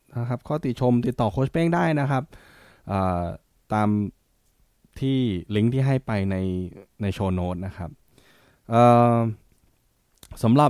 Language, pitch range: Thai, 90-115 Hz